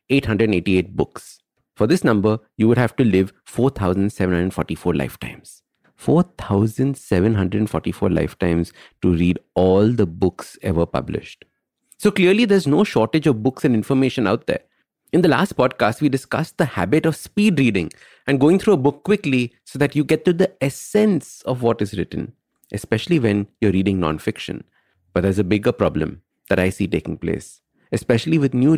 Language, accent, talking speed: English, Indian, 165 wpm